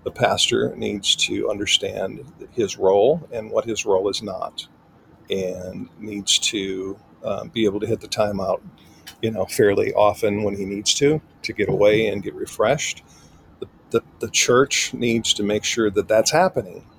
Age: 50-69